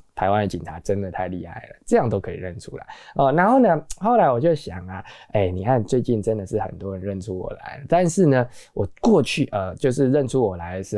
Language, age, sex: Chinese, 20-39, male